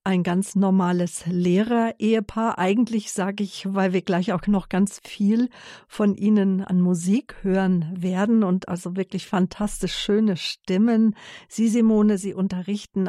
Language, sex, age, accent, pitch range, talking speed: German, female, 50-69, German, 180-210 Hz, 140 wpm